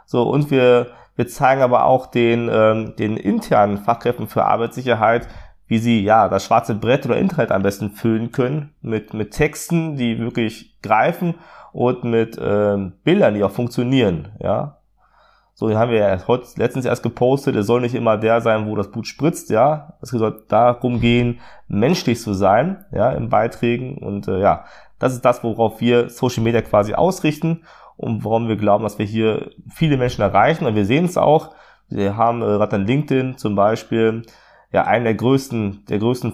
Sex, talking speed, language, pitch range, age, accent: male, 180 wpm, German, 110-130 Hz, 20-39, German